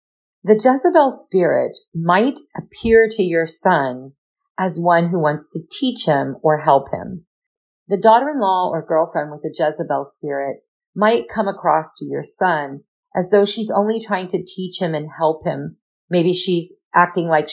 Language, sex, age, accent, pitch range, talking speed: English, female, 40-59, American, 150-200 Hz, 160 wpm